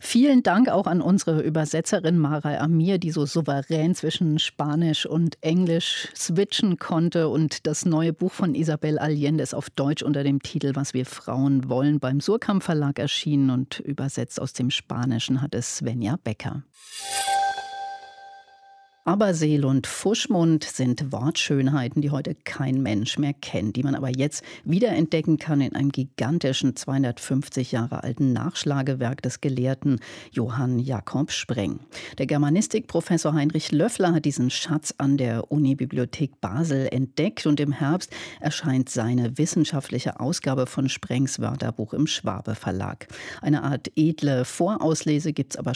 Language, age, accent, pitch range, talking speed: German, 50-69, German, 130-165 Hz, 140 wpm